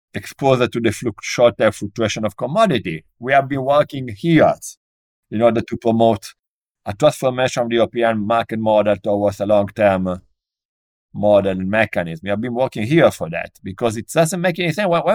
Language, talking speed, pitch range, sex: English, 175 wpm, 115-165 Hz, male